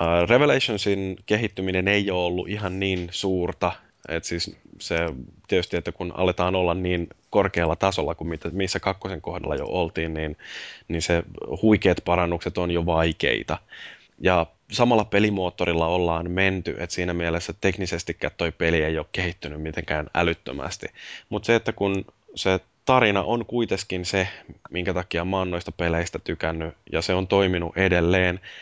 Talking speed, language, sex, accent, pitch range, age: 145 wpm, Finnish, male, native, 85-95 Hz, 20-39